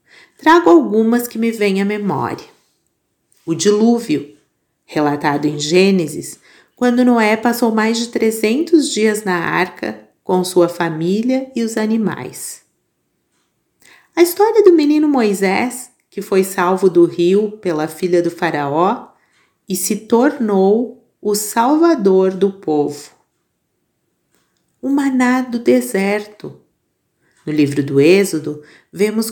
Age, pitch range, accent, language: 40-59, 175-235 Hz, Brazilian, Portuguese